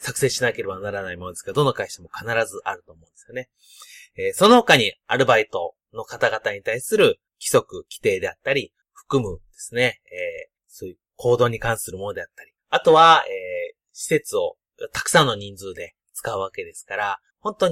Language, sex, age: Japanese, male, 30-49